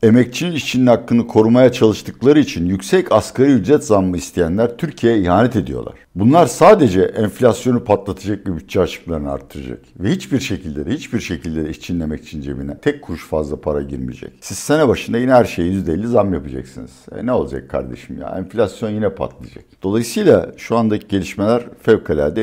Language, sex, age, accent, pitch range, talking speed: Turkish, male, 60-79, native, 80-110 Hz, 155 wpm